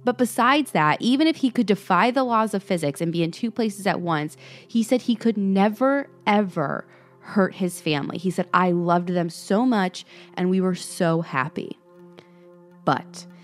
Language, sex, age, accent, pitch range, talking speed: English, female, 20-39, American, 165-220 Hz, 185 wpm